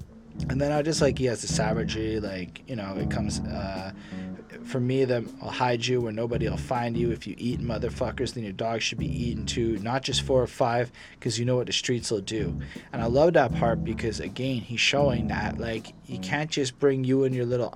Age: 20-39